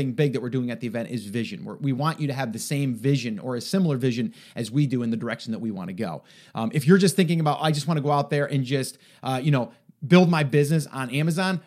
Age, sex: 30-49, male